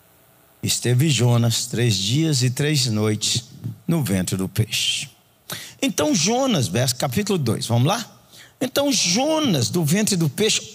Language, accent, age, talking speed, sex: Portuguese, Brazilian, 60-79, 130 wpm, male